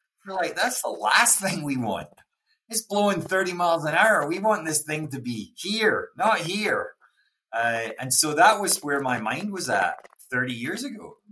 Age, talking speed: 30-49, 195 wpm